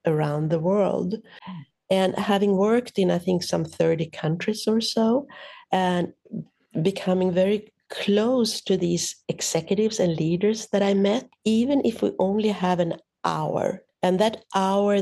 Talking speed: 145 wpm